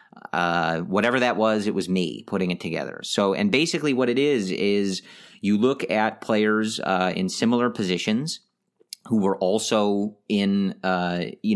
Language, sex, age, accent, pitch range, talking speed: English, male, 30-49, American, 95-110 Hz, 160 wpm